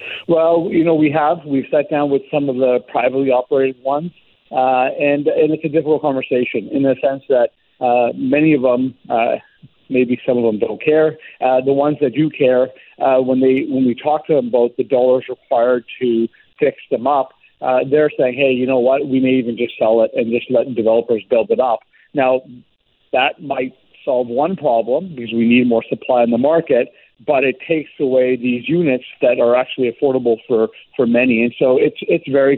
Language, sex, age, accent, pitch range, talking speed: English, male, 50-69, American, 125-150 Hz, 205 wpm